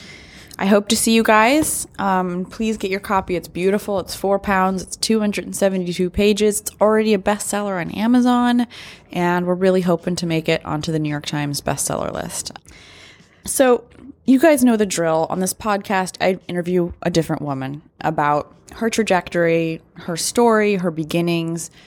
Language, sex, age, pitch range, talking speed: English, female, 20-39, 165-205 Hz, 165 wpm